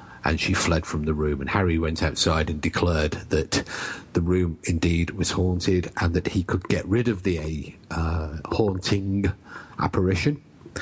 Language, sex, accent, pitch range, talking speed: English, male, British, 85-110 Hz, 160 wpm